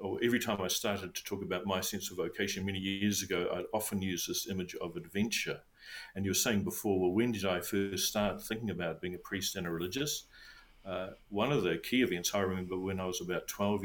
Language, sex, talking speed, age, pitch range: English, male, 235 wpm, 50-69, 95-120 Hz